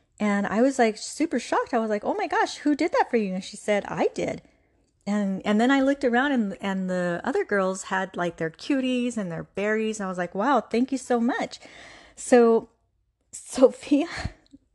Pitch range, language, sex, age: 180-235 Hz, English, female, 30-49